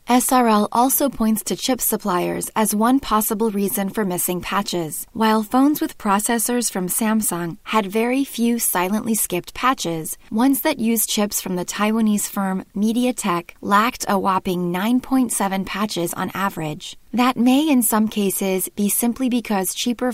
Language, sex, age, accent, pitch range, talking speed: English, female, 20-39, American, 185-235 Hz, 150 wpm